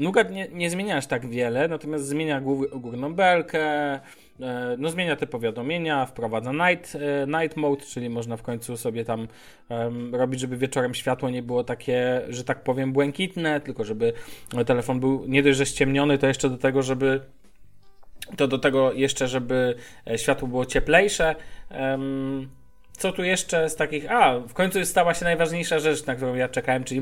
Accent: native